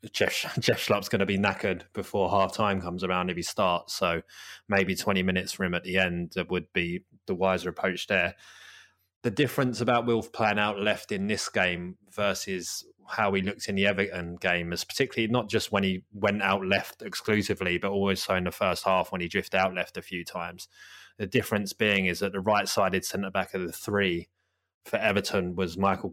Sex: male